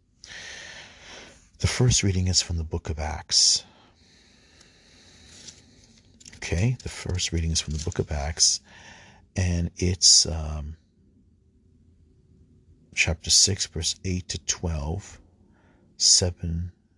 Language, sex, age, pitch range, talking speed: English, male, 40-59, 80-95 Hz, 100 wpm